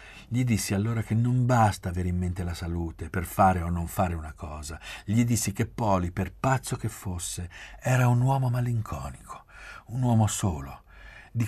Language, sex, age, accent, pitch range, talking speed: Italian, male, 50-69, native, 90-110 Hz, 180 wpm